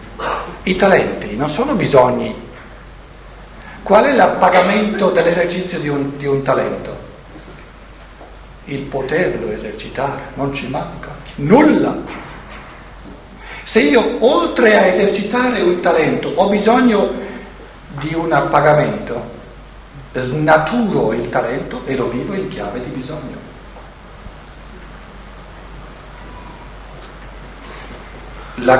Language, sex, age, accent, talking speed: Italian, male, 60-79, native, 90 wpm